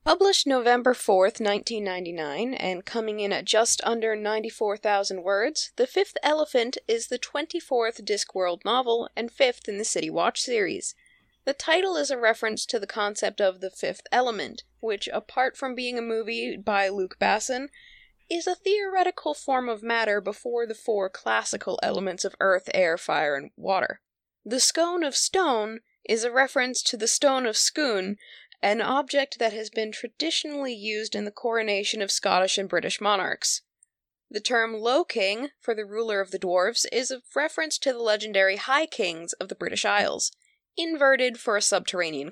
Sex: female